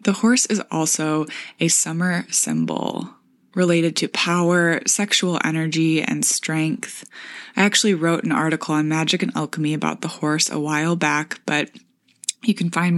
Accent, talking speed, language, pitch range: American, 155 wpm, English, 155-195 Hz